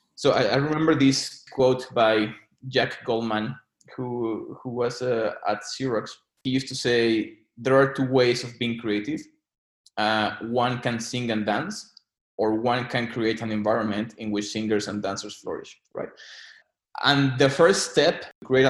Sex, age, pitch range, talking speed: male, 20-39, 115-135 Hz, 160 wpm